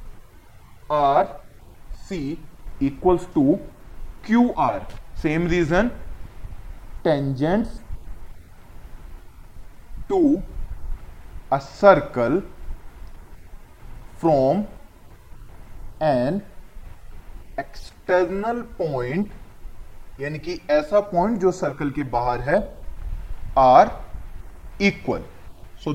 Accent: native